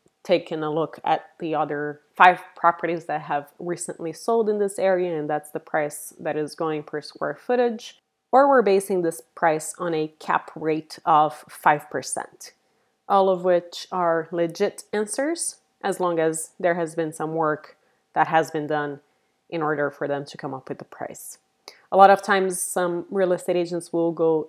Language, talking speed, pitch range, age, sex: English, 185 wpm, 155-195 Hz, 20-39, female